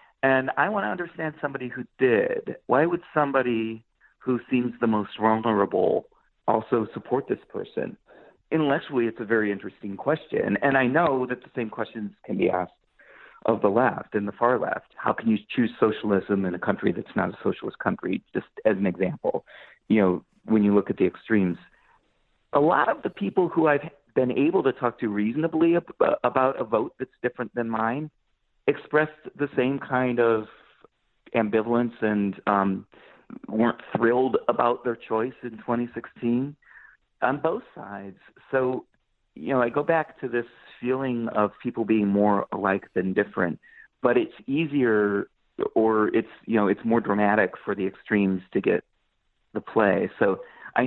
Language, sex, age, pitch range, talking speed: English, male, 40-59, 105-135 Hz, 165 wpm